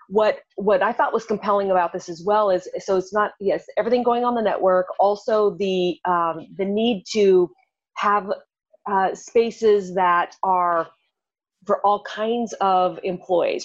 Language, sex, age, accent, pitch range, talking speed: English, female, 30-49, American, 180-215 Hz, 160 wpm